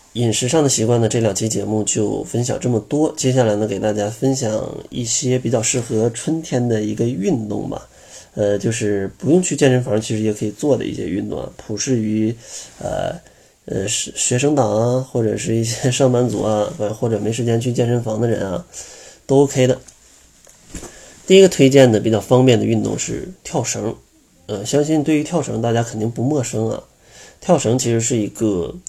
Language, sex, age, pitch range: Chinese, male, 20-39, 110-135 Hz